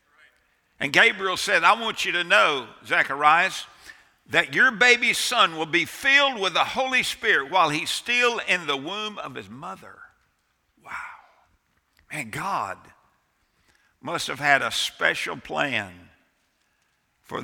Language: English